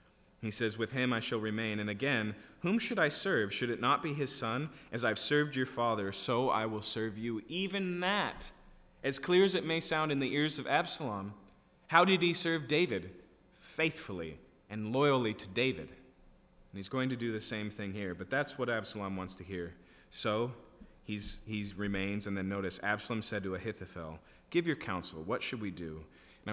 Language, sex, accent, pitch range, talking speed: English, male, American, 90-120 Hz, 195 wpm